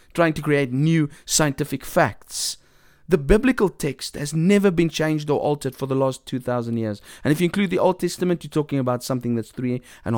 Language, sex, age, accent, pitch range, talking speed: English, male, 30-49, South African, 115-160 Hz, 210 wpm